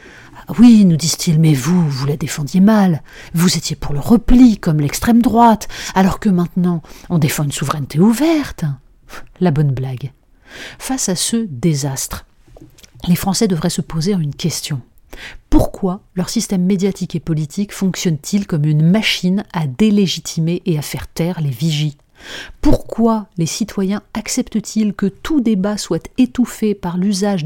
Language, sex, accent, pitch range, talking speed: French, female, French, 150-205 Hz, 150 wpm